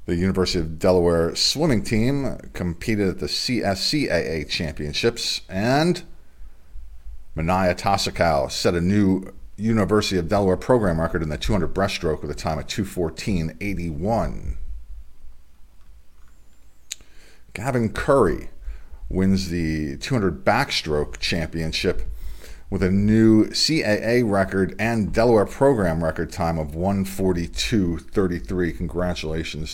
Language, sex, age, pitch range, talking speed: English, male, 40-59, 80-105 Hz, 105 wpm